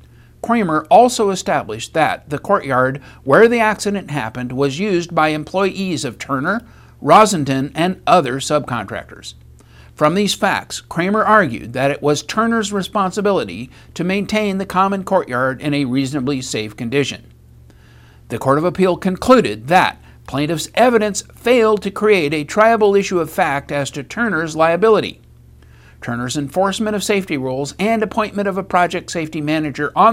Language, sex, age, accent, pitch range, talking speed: English, male, 60-79, American, 135-205 Hz, 145 wpm